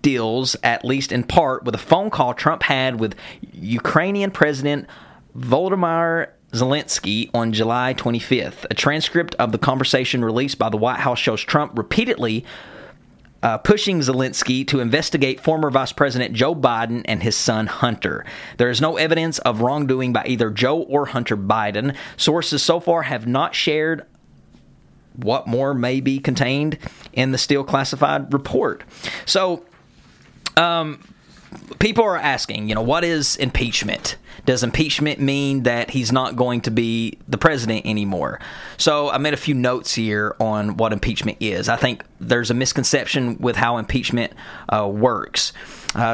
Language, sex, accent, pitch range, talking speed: English, male, American, 120-155 Hz, 155 wpm